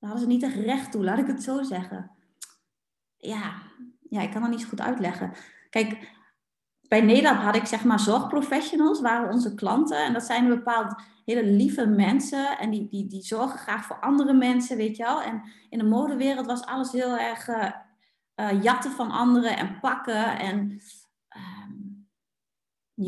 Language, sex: Dutch, female